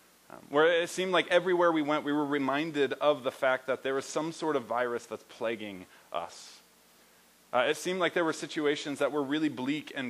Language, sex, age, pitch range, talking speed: English, male, 20-39, 105-155 Hz, 215 wpm